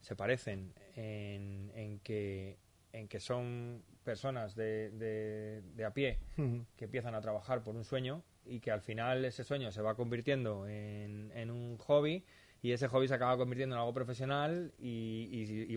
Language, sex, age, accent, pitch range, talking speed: Spanish, male, 20-39, Spanish, 105-125 Hz, 160 wpm